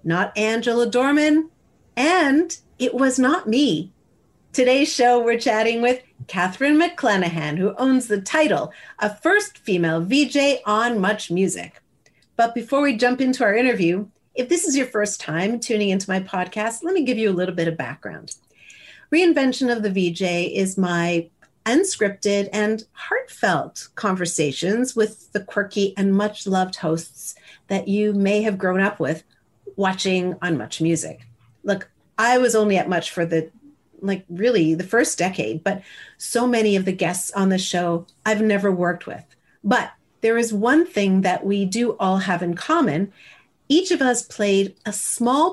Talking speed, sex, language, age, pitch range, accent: 160 wpm, female, English, 40-59, 185-250 Hz, American